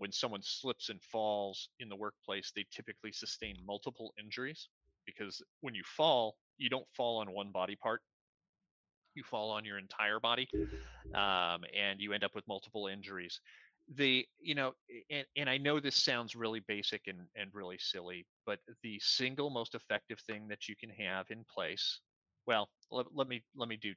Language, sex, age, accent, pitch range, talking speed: English, male, 30-49, American, 100-125 Hz, 180 wpm